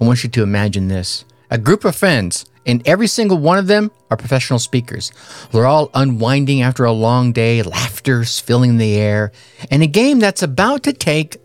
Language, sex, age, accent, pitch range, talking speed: English, male, 50-69, American, 115-160 Hz, 195 wpm